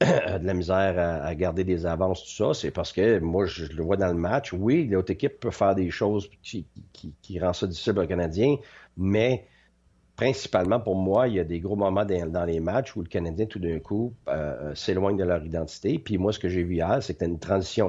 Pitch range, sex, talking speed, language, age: 95-120 Hz, male, 230 wpm, French, 50-69